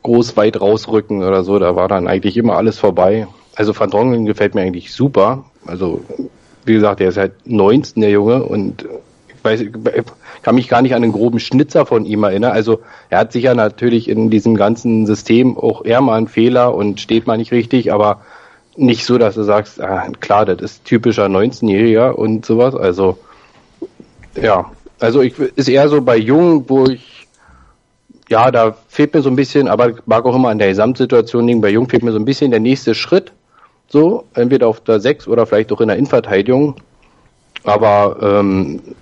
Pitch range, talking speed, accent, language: 105-125 Hz, 195 wpm, German, German